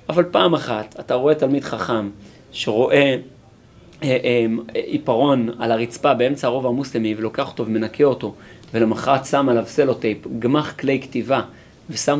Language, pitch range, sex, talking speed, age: Hebrew, 130-180 Hz, male, 130 wpm, 30-49